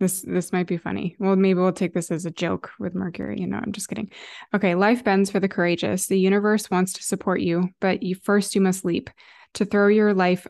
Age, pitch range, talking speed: 20-39, 180-205 Hz, 240 wpm